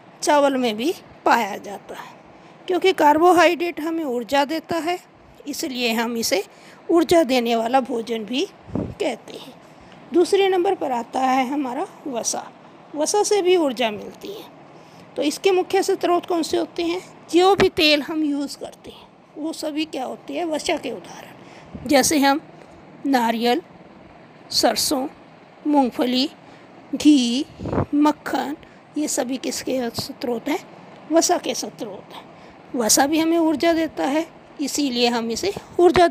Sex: female